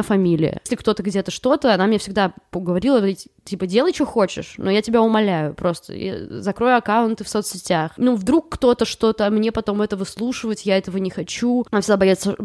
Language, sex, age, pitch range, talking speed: Russian, female, 20-39, 190-255 Hz, 190 wpm